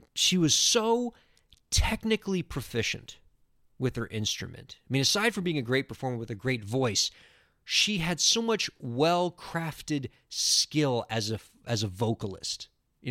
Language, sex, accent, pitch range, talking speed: English, male, American, 110-155 Hz, 145 wpm